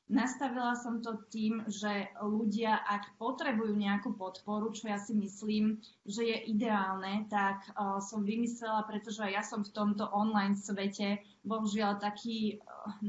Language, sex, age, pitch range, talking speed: Slovak, female, 20-39, 205-225 Hz, 145 wpm